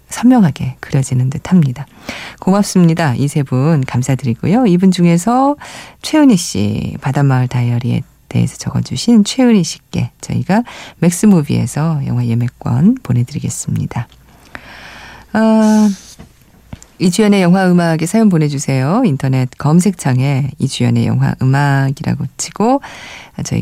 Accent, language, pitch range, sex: native, Korean, 130-190 Hz, female